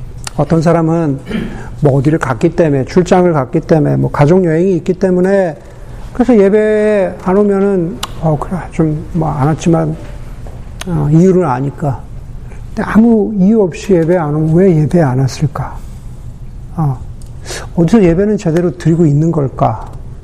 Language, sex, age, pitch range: Korean, male, 50-69, 130-185 Hz